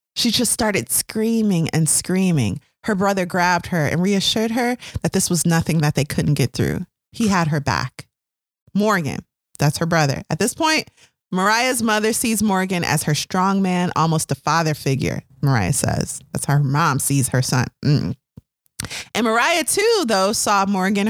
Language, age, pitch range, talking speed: English, 30-49, 155-210 Hz, 175 wpm